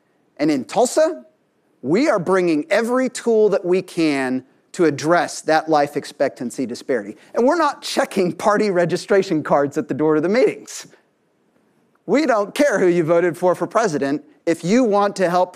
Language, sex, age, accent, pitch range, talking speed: Russian, male, 40-59, American, 150-205 Hz, 170 wpm